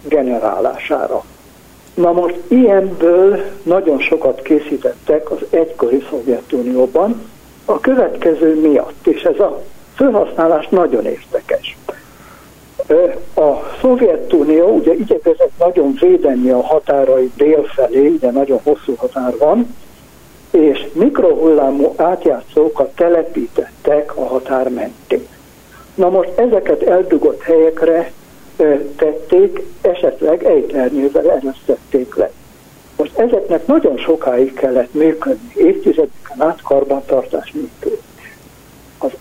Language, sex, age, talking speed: Hungarian, male, 60-79, 90 wpm